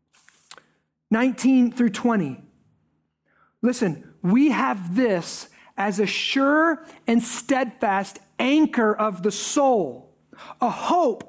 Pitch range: 250-360 Hz